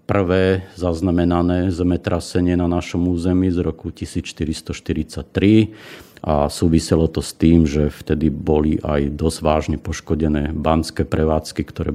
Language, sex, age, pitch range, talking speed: Slovak, male, 50-69, 80-90 Hz, 120 wpm